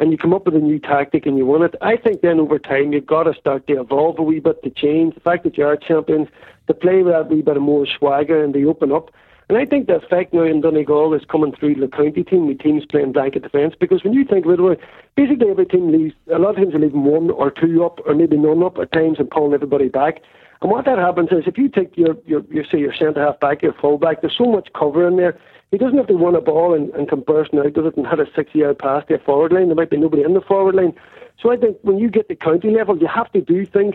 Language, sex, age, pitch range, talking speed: English, male, 60-79, 150-190 Hz, 295 wpm